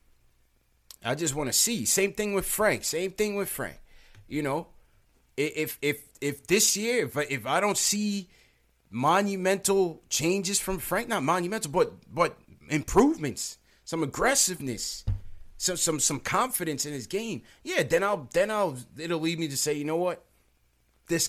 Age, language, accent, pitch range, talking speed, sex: 30-49, English, American, 120-170 Hz, 160 wpm, male